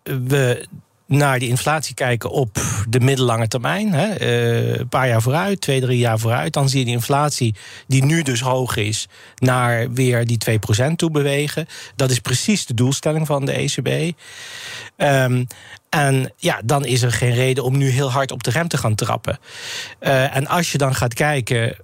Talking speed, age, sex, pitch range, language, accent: 185 wpm, 40-59, male, 120-150 Hz, Dutch, Dutch